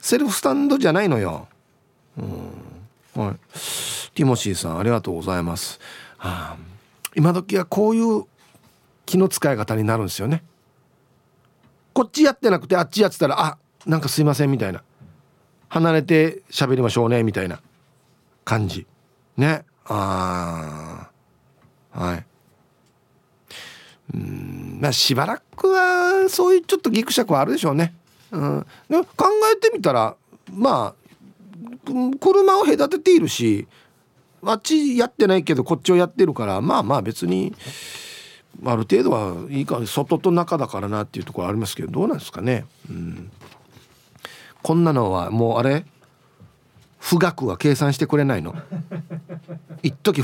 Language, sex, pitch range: Japanese, male, 115-190 Hz